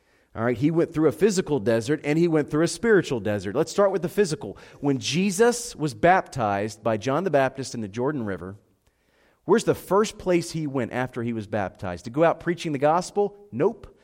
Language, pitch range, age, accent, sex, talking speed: English, 105-155 Hz, 30-49, American, male, 200 wpm